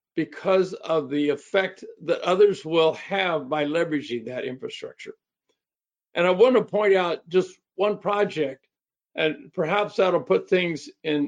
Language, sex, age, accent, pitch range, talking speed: English, male, 60-79, American, 150-195 Hz, 145 wpm